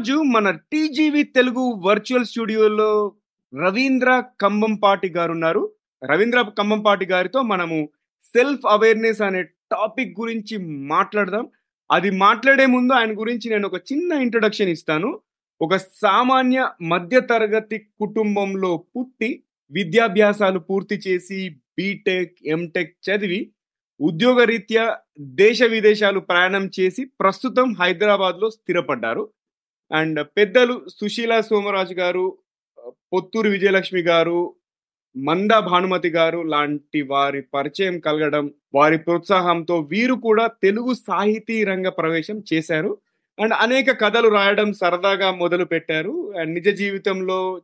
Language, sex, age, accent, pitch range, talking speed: Telugu, male, 30-49, native, 180-225 Hz, 105 wpm